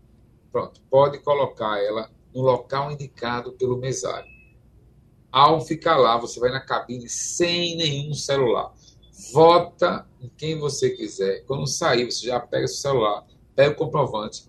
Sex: male